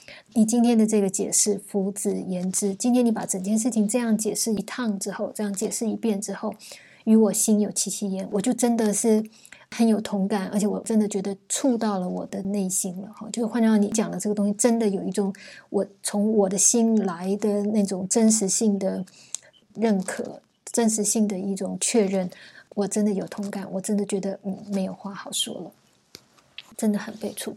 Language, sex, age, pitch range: Chinese, female, 20-39, 200-220 Hz